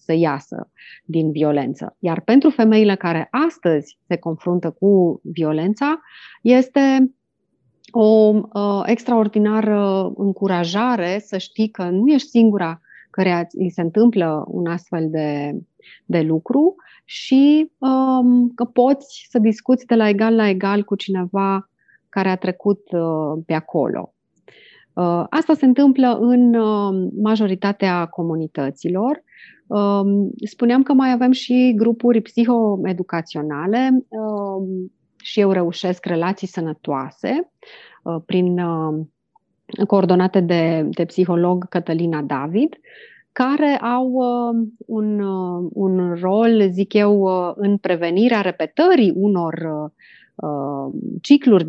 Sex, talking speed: female, 100 wpm